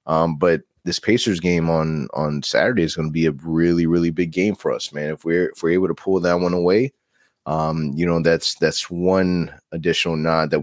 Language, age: English, 20-39